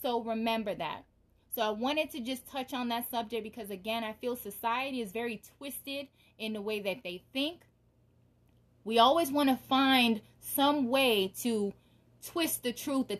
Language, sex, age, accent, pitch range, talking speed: English, female, 20-39, American, 205-265 Hz, 175 wpm